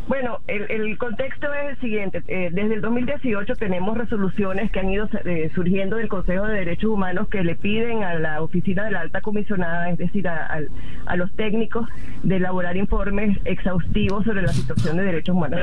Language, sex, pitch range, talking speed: Spanish, female, 175-215 Hz, 190 wpm